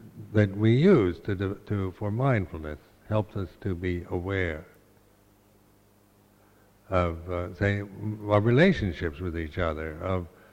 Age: 60-79